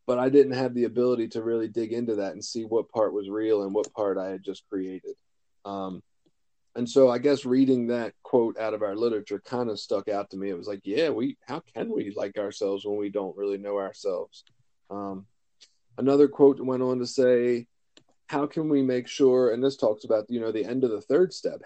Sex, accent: male, American